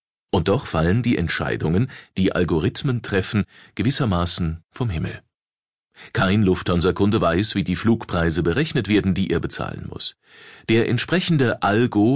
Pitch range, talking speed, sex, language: 90-120 Hz, 130 wpm, male, German